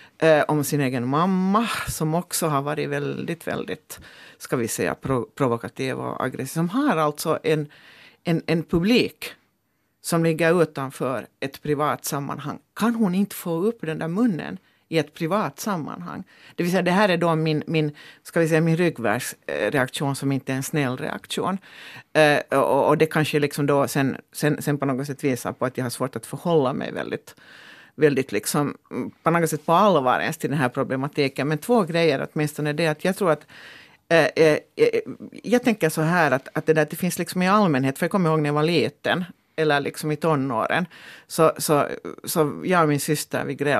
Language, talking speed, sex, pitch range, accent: Finnish, 190 wpm, female, 145-175 Hz, Swedish